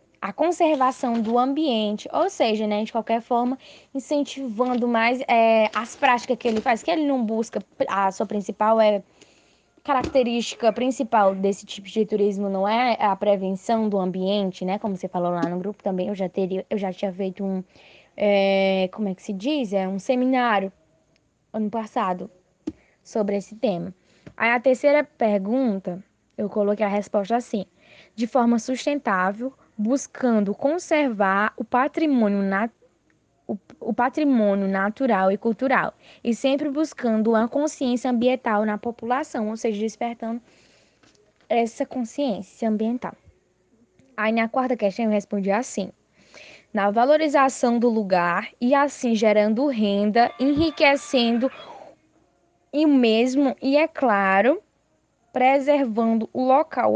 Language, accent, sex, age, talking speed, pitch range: Portuguese, Brazilian, female, 10-29, 135 wpm, 205-260 Hz